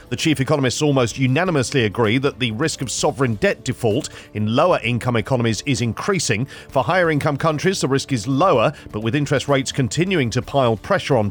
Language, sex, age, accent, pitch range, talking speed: English, male, 40-59, British, 125-155 Hz, 180 wpm